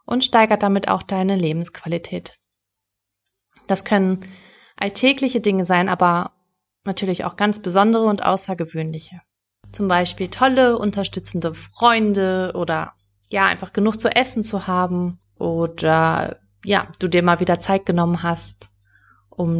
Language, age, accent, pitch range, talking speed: German, 30-49, German, 170-210 Hz, 125 wpm